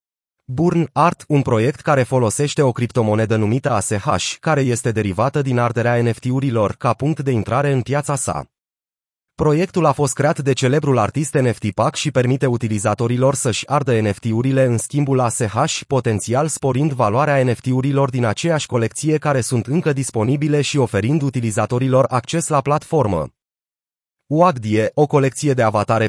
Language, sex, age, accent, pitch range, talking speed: Romanian, male, 30-49, native, 115-145 Hz, 145 wpm